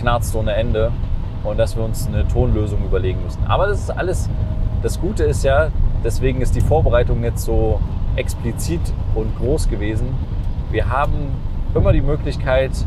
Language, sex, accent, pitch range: German, male, German, 100-125 Hz